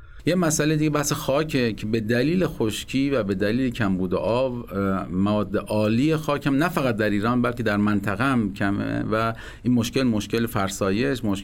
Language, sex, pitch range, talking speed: Persian, male, 105-140 Hz, 165 wpm